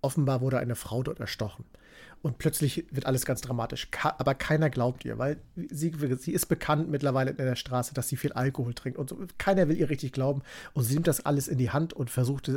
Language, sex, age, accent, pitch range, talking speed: German, male, 40-59, German, 125-150 Hz, 220 wpm